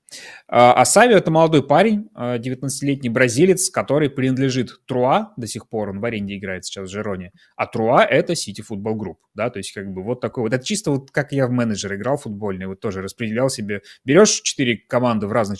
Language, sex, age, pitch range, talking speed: Russian, male, 20-39, 105-130 Hz, 195 wpm